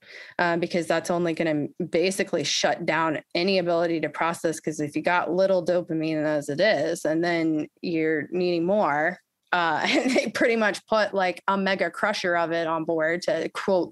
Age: 20-39